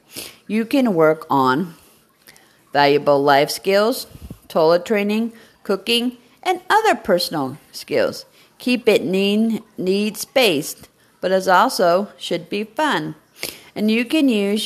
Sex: female